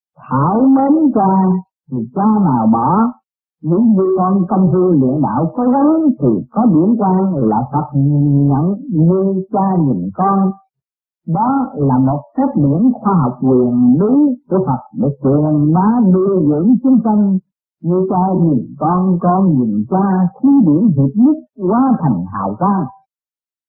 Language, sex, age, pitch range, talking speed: Vietnamese, male, 50-69, 150-215 Hz, 155 wpm